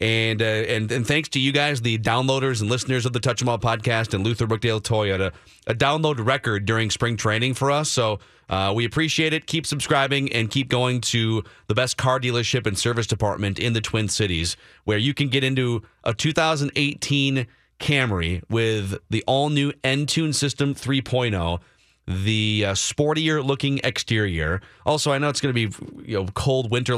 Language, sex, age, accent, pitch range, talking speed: English, male, 30-49, American, 105-135 Hz, 185 wpm